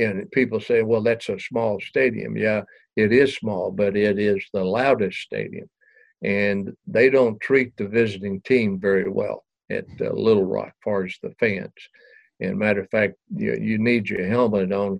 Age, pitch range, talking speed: 60-79, 100-130 Hz, 185 wpm